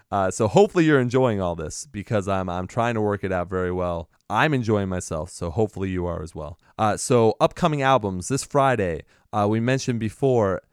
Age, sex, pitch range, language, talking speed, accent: 30-49, male, 95-120 Hz, English, 200 wpm, American